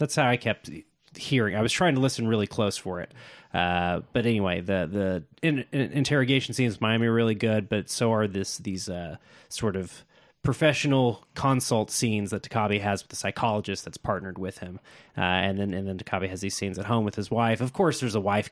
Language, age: English, 30-49